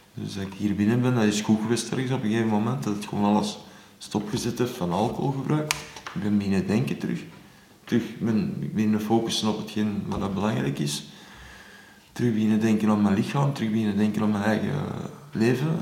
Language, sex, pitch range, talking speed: Dutch, male, 105-115 Hz, 195 wpm